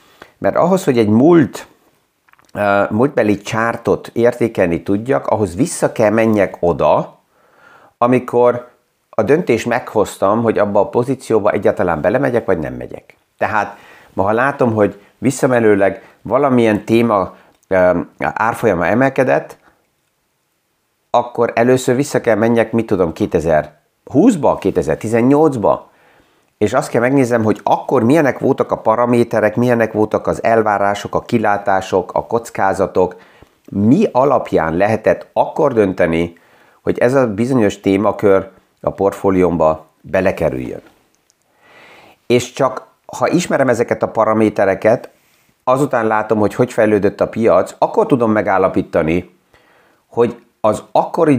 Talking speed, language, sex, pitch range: 110 wpm, Hungarian, male, 100-120 Hz